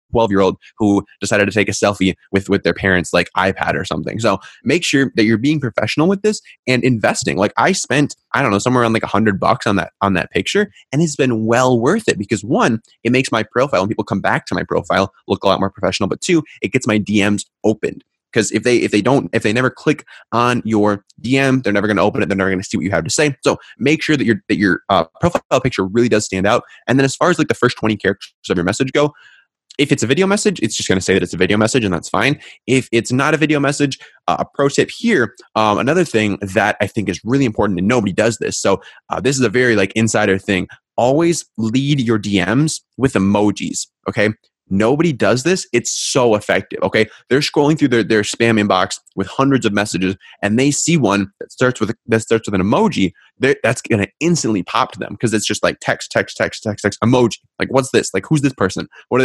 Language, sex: English, male